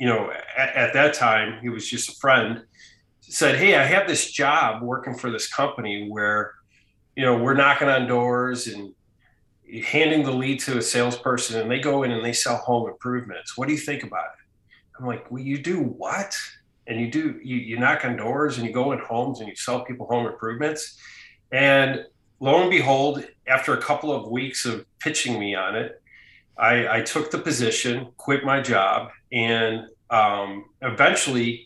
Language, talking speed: English, 190 wpm